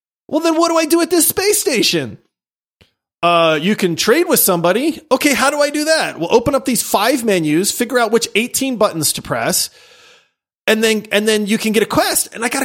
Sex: male